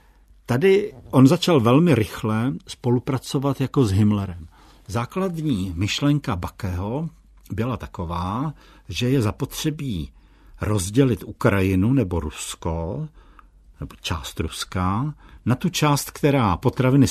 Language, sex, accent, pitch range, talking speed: Czech, male, native, 95-130 Hz, 100 wpm